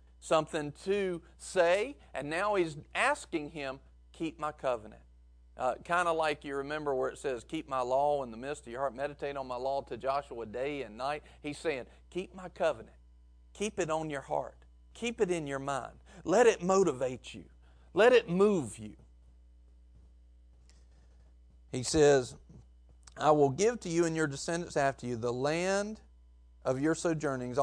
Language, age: English, 40-59